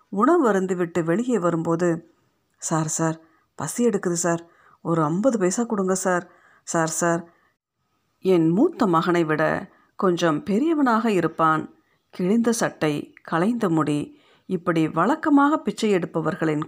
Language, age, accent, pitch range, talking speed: Tamil, 50-69, native, 165-215 Hz, 115 wpm